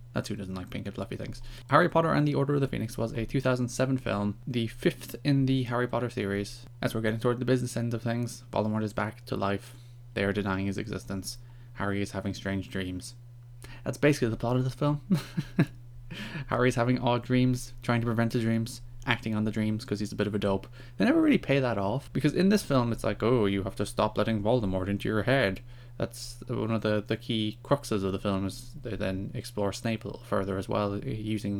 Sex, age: male, 20-39